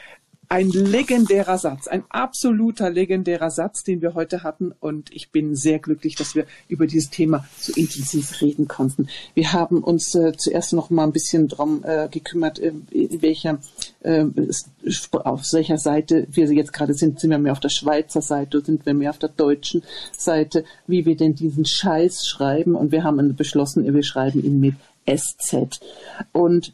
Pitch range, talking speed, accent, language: 150-170 Hz, 175 wpm, German, German